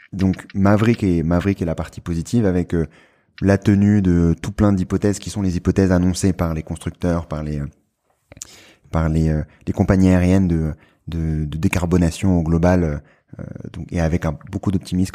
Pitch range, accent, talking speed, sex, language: 80-95 Hz, French, 175 wpm, male, French